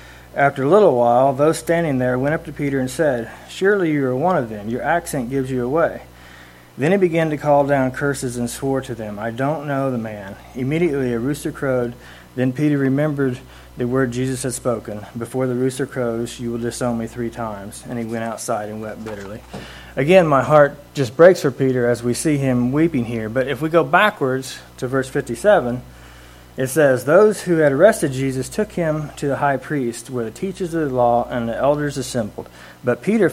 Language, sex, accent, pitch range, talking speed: English, male, American, 115-145 Hz, 205 wpm